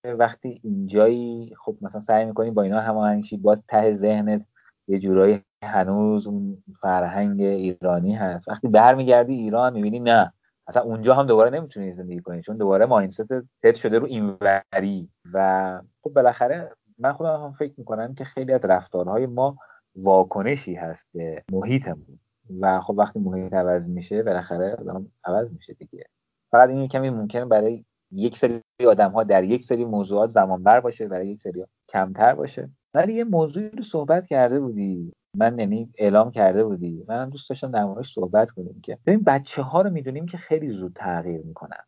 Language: Persian